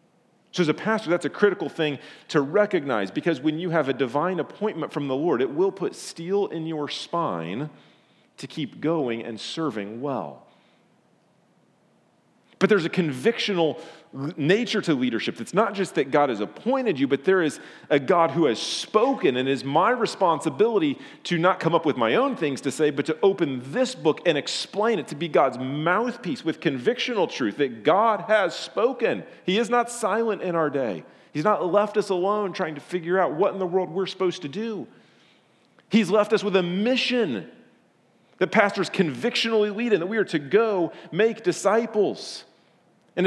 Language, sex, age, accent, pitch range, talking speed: English, male, 40-59, American, 160-215 Hz, 185 wpm